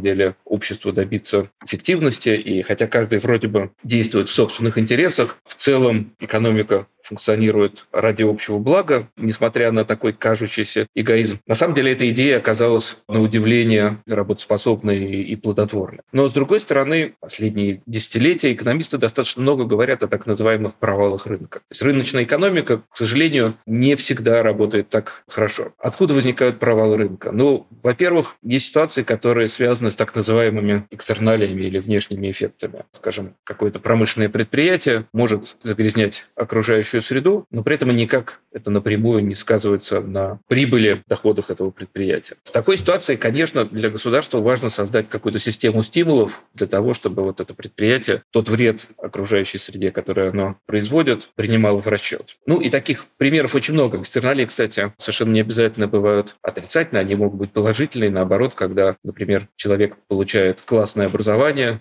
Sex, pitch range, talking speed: male, 105-120 Hz, 145 wpm